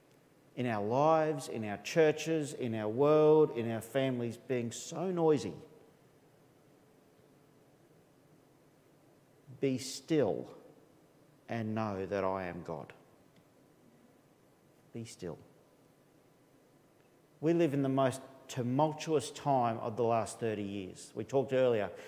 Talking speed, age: 110 wpm, 40-59